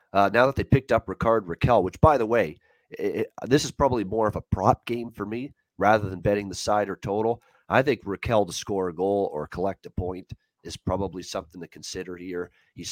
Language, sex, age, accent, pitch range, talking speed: English, male, 30-49, American, 95-105 Hz, 220 wpm